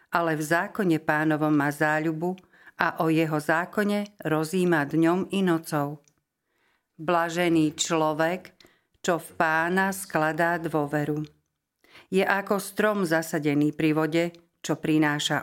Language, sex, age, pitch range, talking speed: Slovak, female, 50-69, 155-175 Hz, 115 wpm